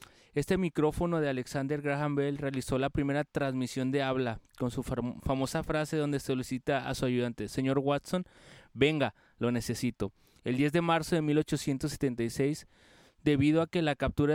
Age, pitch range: 30-49, 130-150 Hz